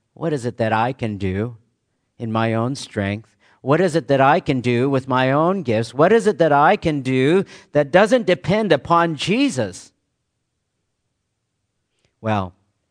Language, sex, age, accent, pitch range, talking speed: English, male, 50-69, American, 115-155 Hz, 165 wpm